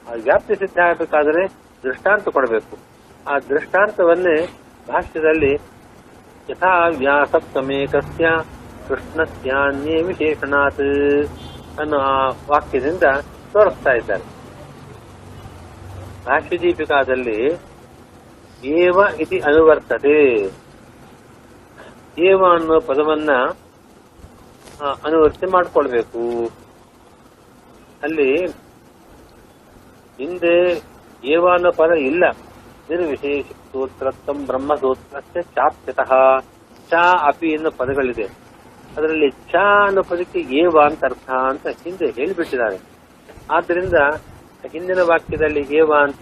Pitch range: 130-170 Hz